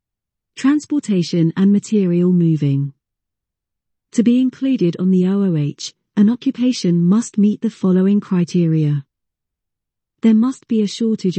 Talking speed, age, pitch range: 115 wpm, 40-59, 170-225 Hz